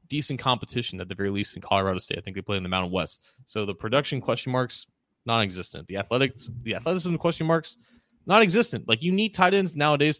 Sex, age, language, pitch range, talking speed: male, 20-39, English, 100-125 Hz, 210 wpm